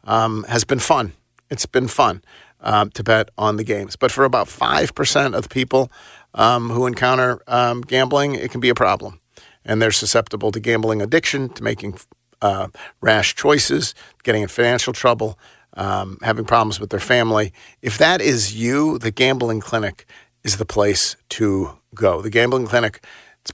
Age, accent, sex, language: 50-69, American, male, English